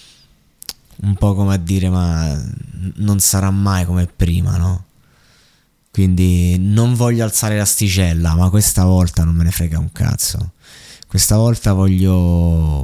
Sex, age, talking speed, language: male, 20-39, 135 wpm, Italian